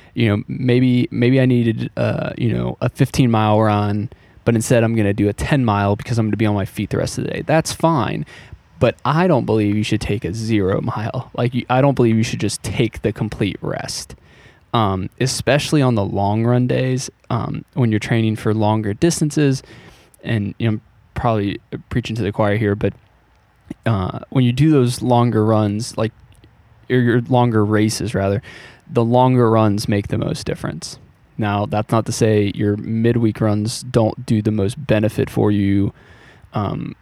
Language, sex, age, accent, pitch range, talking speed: English, male, 20-39, American, 105-120 Hz, 190 wpm